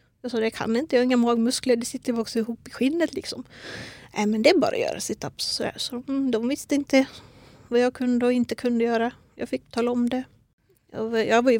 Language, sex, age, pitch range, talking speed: Swedish, female, 30-49, 220-250 Hz, 200 wpm